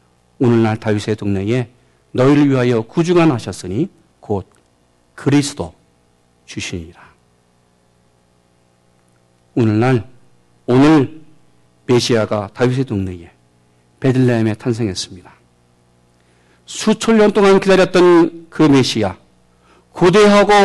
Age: 50-69